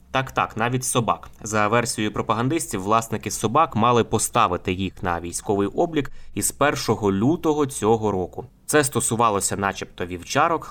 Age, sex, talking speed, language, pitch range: 20-39, male, 130 wpm, Ukrainian, 100-125 Hz